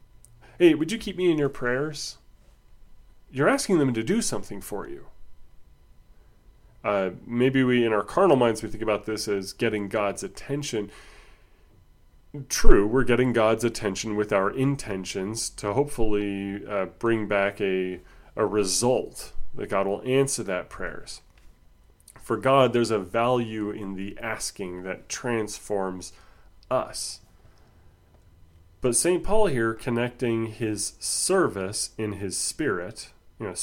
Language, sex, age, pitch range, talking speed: English, male, 30-49, 95-120 Hz, 135 wpm